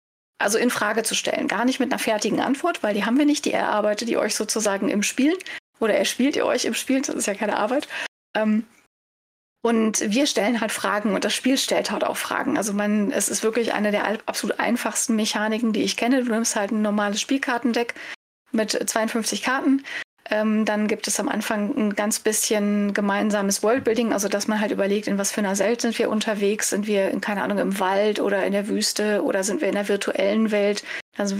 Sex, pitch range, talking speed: female, 205-230 Hz, 220 wpm